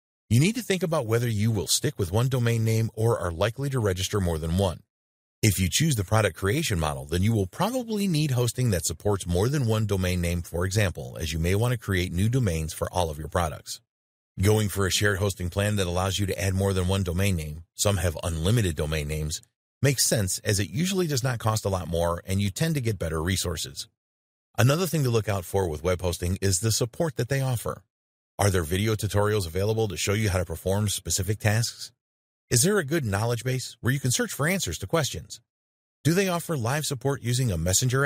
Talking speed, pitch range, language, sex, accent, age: 230 wpm, 90-125 Hz, English, male, American, 30-49